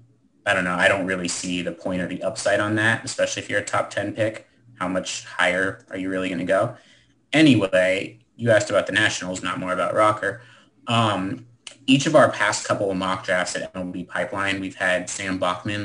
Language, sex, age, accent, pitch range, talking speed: English, male, 30-49, American, 95-120 Hz, 210 wpm